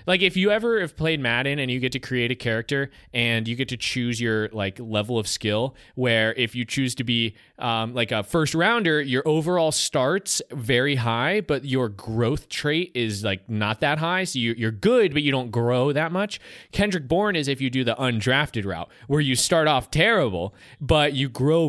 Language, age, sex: English, 20-39, male